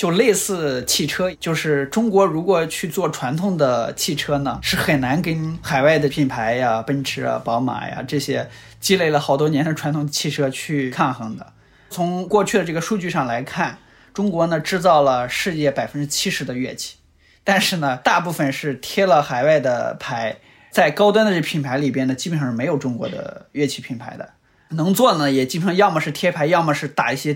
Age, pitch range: 20-39, 135-185 Hz